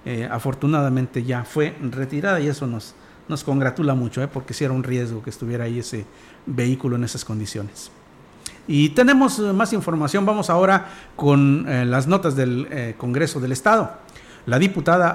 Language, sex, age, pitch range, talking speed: Spanish, male, 50-69, 130-165 Hz, 170 wpm